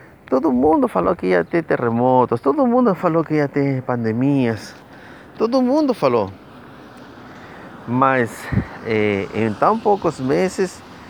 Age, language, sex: 30-49, Portuguese, male